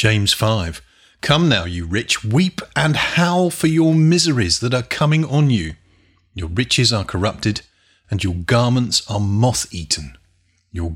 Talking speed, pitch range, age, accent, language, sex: 150 wpm, 95-145 Hz, 40-59, British, English, male